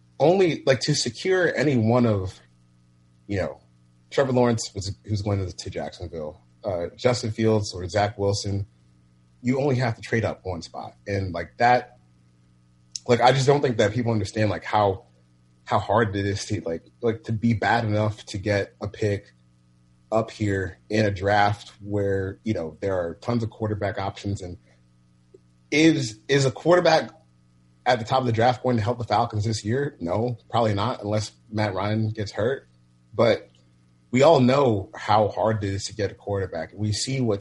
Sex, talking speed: male, 185 wpm